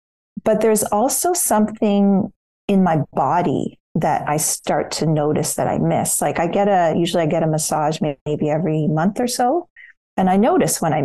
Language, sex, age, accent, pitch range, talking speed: English, female, 40-59, American, 165-215 Hz, 185 wpm